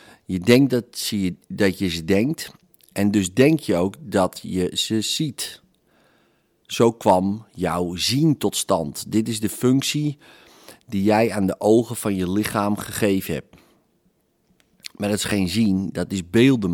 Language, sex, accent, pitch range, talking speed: Dutch, male, Dutch, 95-120 Hz, 155 wpm